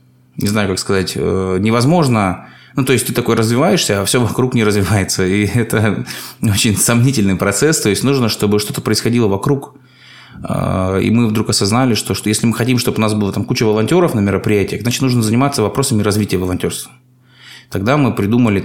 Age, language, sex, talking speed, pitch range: 20-39, Russian, male, 175 wpm, 95-125 Hz